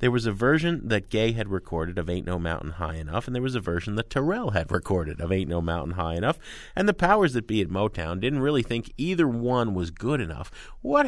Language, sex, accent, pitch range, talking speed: English, male, American, 90-140 Hz, 245 wpm